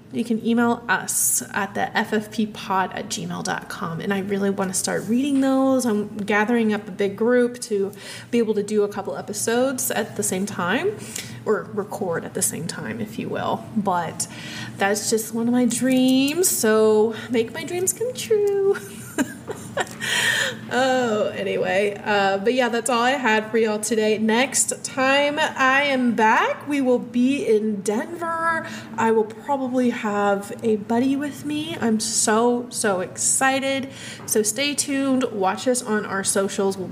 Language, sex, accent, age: English, female, American, 20-39